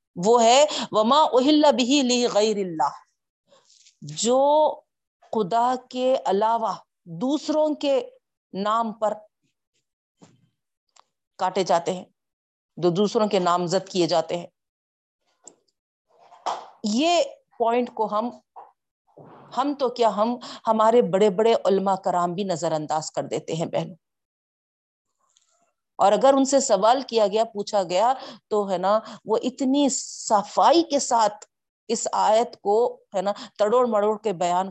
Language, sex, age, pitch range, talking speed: Urdu, female, 40-59, 195-255 Hz, 125 wpm